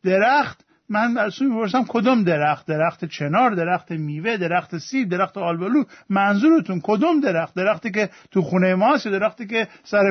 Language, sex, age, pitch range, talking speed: Persian, male, 50-69, 185-230 Hz, 160 wpm